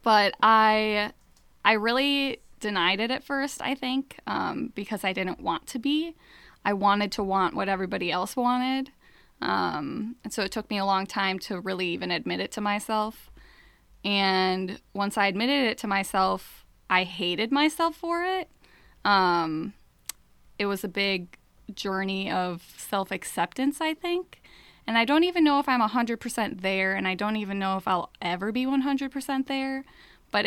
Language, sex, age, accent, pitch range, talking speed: English, female, 10-29, American, 185-235 Hz, 165 wpm